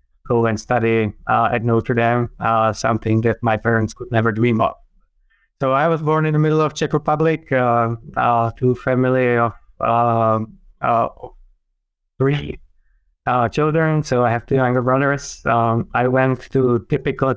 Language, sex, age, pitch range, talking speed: English, male, 20-39, 115-125 Hz, 160 wpm